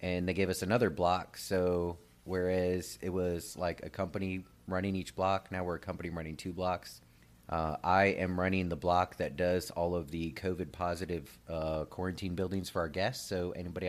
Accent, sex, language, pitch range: American, male, English, 80-95 Hz